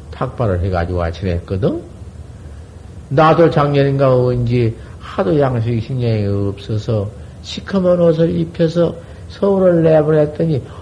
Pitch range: 95-150 Hz